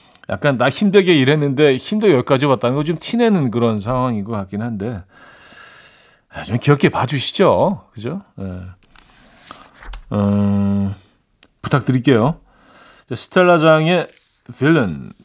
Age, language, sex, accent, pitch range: 40-59, Korean, male, native, 105-155 Hz